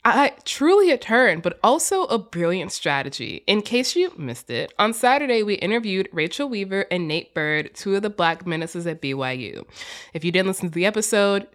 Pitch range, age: 160-225 Hz, 20-39